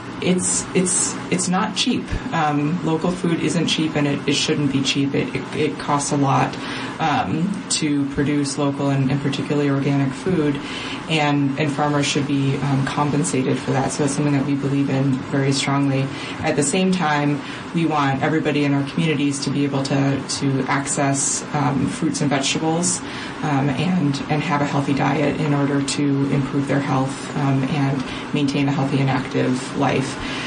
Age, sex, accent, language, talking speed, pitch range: 20-39, female, American, English, 175 wpm, 140-150 Hz